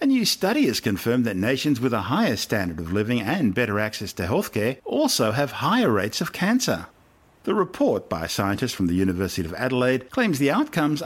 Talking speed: 205 wpm